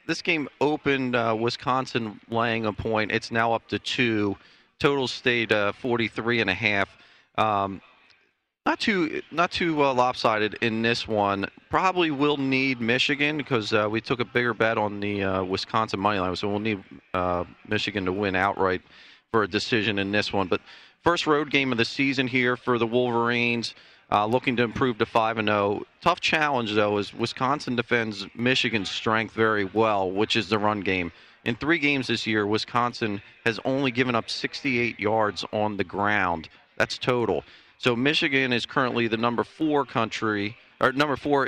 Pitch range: 105-130 Hz